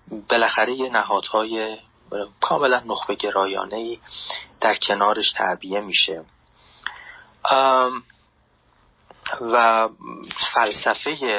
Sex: male